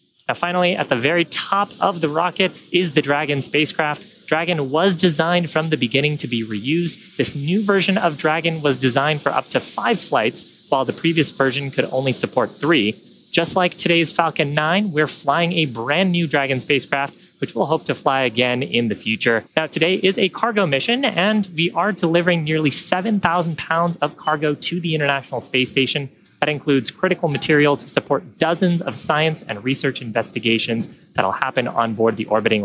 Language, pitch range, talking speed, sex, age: English, 150-190 Hz, 185 wpm, male, 30-49